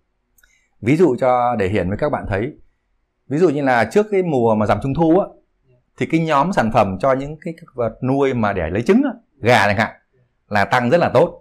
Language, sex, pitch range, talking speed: Vietnamese, male, 100-140 Hz, 230 wpm